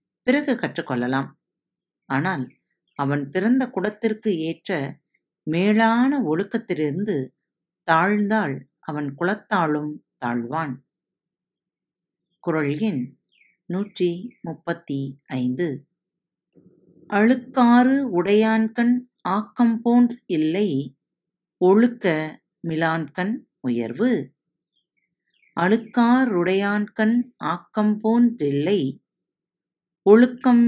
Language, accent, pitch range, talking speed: Tamil, native, 155-220 Hz, 50 wpm